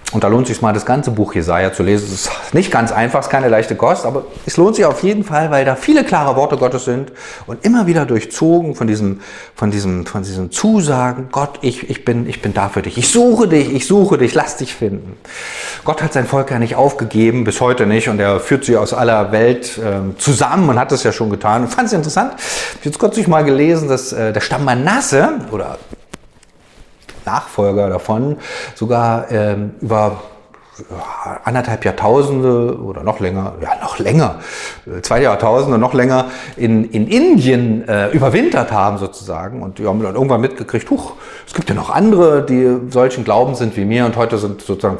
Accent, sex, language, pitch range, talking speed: German, male, German, 105-145 Hz, 200 wpm